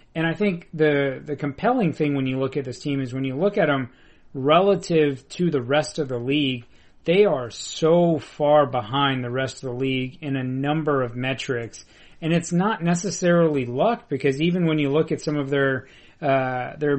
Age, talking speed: 30-49, 200 wpm